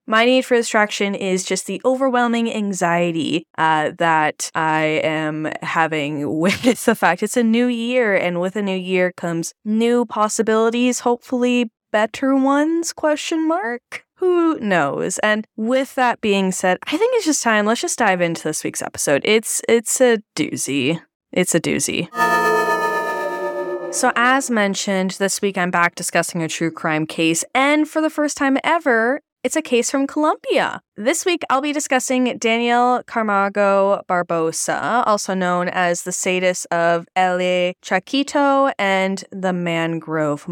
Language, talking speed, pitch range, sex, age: English, 150 wpm, 180-255 Hz, female, 10-29